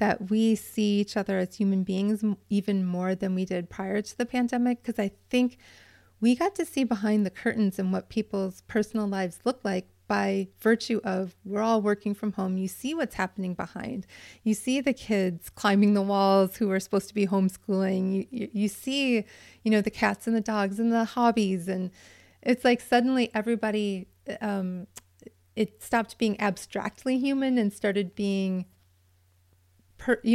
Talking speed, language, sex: 175 wpm, English, female